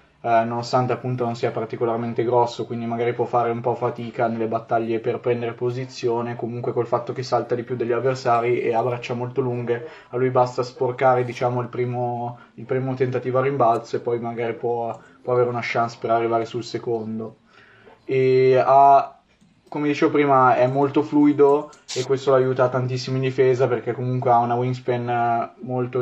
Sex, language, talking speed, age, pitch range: male, Italian, 180 wpm, 20-39, 120-130 Hz